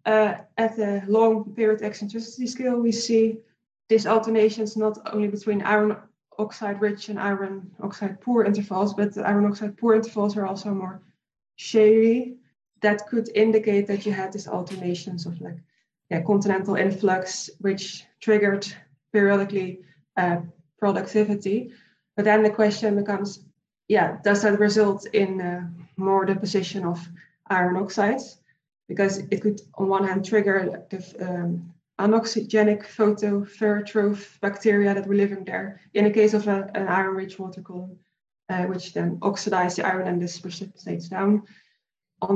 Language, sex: English, female